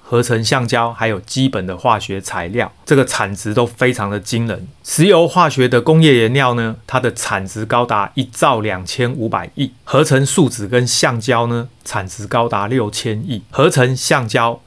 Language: Chinese